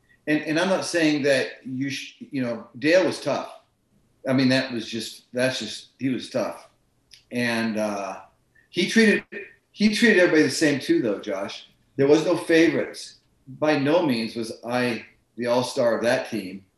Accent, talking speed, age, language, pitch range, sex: American, 170 wpm, 40-59, English, 120-145 Hz, male